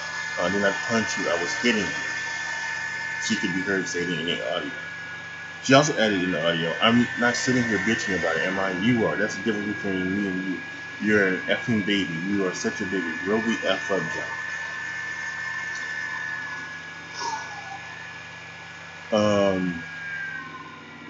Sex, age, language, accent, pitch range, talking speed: male, 20-39, English, American, 90-120 Hz, 160 wpm